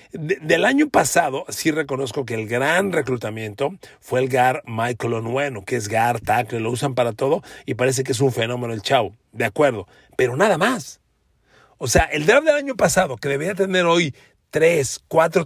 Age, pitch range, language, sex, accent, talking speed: 40-59, 135-200 Hz, Spanish, male, Mexican, 190 wpm